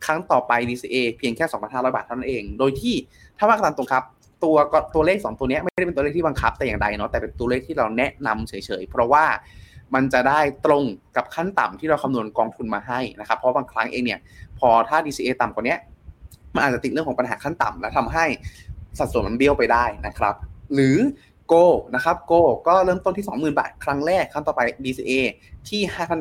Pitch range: 120-155 Hz